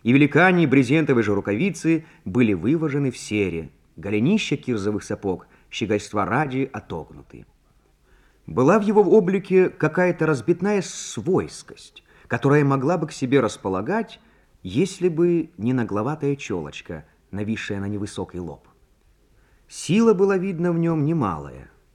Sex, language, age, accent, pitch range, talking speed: male, Russian, 30-49, native, 105-170 Hz, 120 wpm